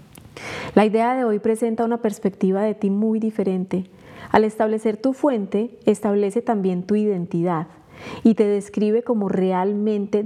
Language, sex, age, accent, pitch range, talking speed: Spanish, female, 30-49, Colombian, 185-220 Hz, 140 wpm